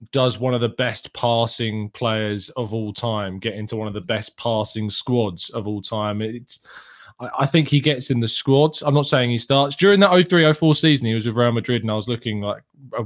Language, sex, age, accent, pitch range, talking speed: English, male, 20-39, British, 110-135 Hz, 230 wpm